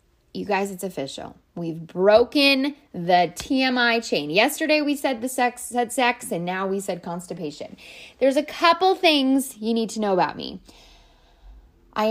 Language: English